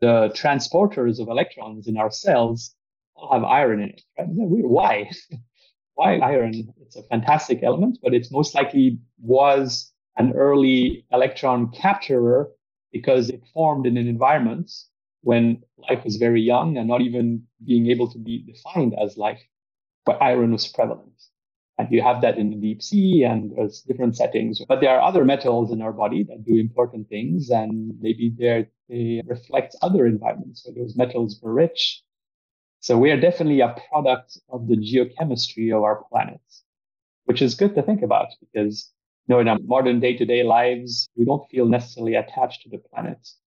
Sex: male